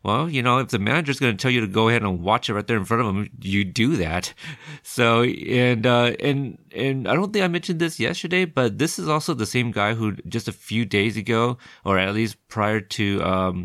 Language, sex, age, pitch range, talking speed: English, male, 30-49, 100-125 Hz, 245 wpm